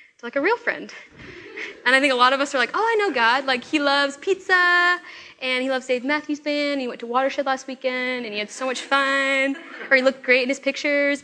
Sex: female